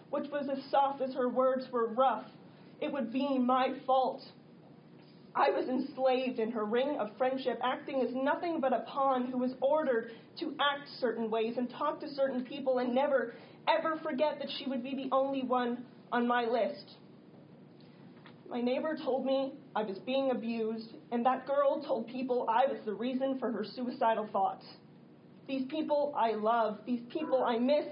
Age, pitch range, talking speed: 30-49, 245-280 Hz, 180 wpm